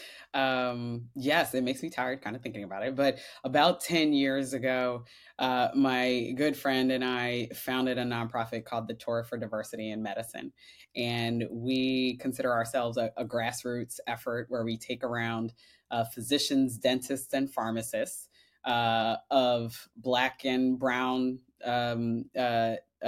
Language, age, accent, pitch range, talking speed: English, 20-39, American, 120-135 Hz, 145 wpm